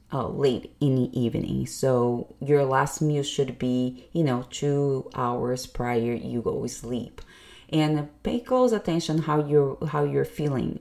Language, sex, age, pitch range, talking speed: English, female, 30-49, 135-160 Hz, 160 wpm